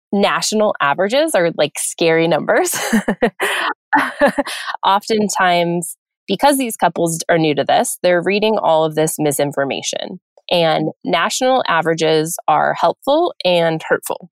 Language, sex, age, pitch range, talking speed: English, female, 20-39, 160-230 Hz, 115 wpm